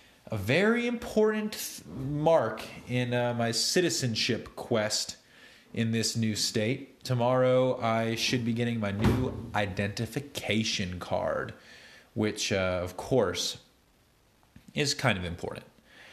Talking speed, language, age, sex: 115 wpm, English, 30-49, male